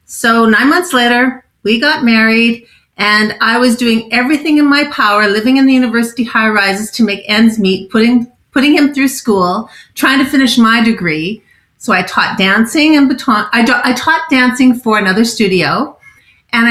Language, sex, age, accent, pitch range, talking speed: English, female, 40-59, American, 215-260 Hz, 170 wpm